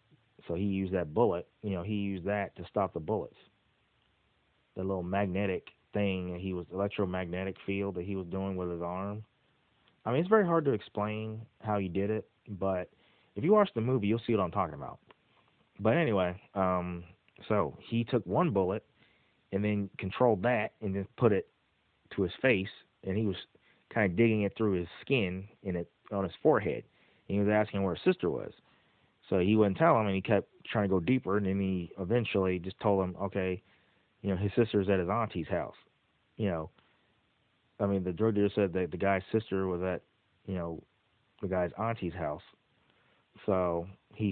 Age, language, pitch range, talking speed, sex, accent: 20-39, English, 95-110 Hz, 195 wpm, male, American